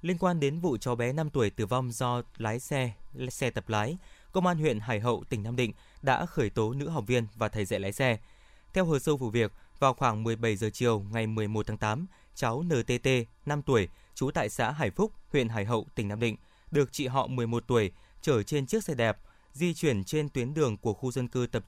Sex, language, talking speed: male, Vietnamese, 235 wpm